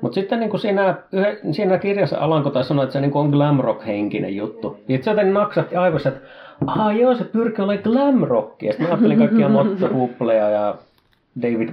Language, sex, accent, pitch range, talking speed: Finnish, male, native, 115-170 Hz, 185 wpm